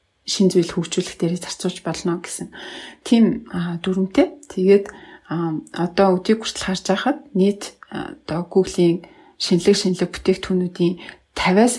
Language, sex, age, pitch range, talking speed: English, female, 30-49, 170-195 Hz, 105 wpm